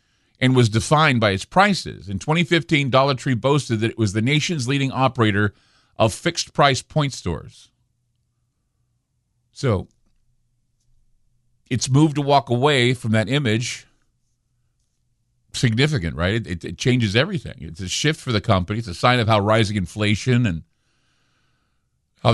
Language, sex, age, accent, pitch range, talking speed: English, male, 50-69, American, 115-140 Hz, 140 wpm